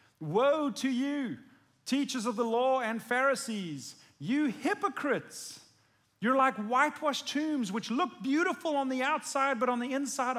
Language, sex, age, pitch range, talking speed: English, male, 40-59, 155-260 Hz, 145 wpm